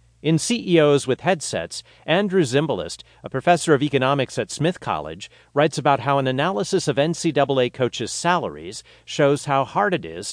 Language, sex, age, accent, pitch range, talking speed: English, male, 40-59, American, 115-155 Hz, 155 wpm